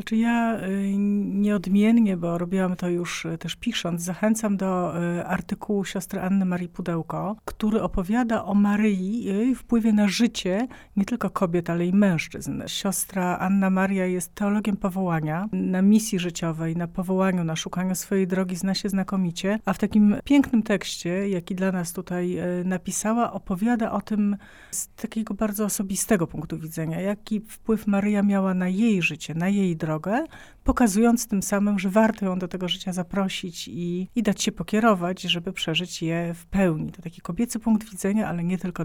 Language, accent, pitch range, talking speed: Polish, native, 175-210 Hz, 160 wpm